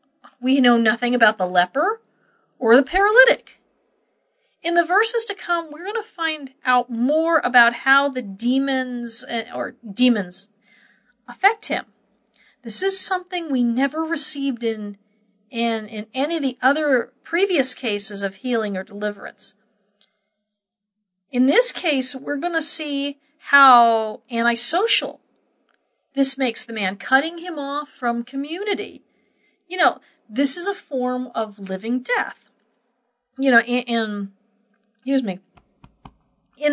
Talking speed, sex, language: 130 wpm, female, English